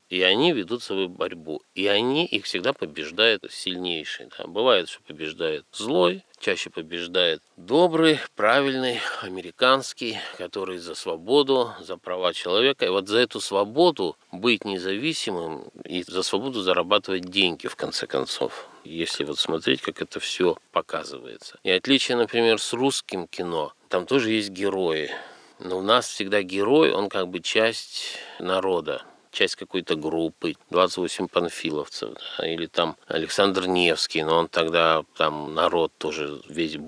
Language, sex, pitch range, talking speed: Russian, male, 85-110 Hz, 140 wpm